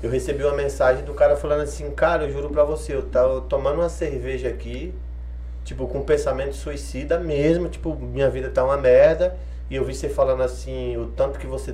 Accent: Brazilian